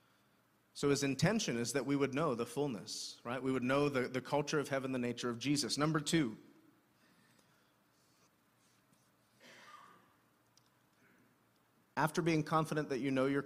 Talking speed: 145 wpm